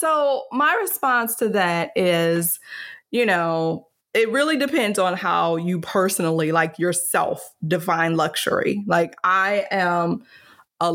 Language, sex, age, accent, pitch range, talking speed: English, female, 20-39, American, 170-215 Hz, 125 wpm